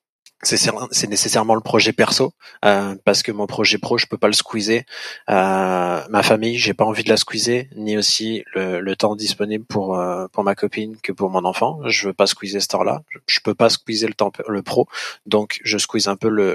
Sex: male